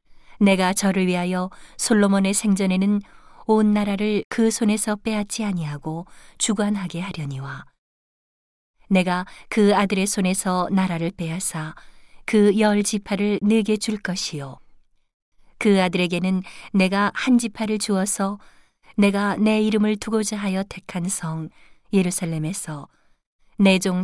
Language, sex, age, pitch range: Korean, female, 40-59, 180-210 Hz